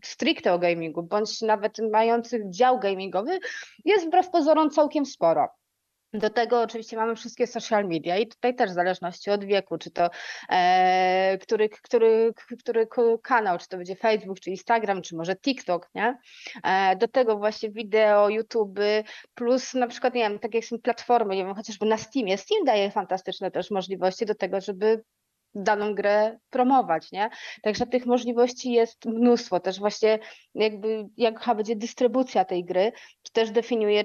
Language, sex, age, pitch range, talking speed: Polish, female, 30-49, 195-235 Hz, 160 wpm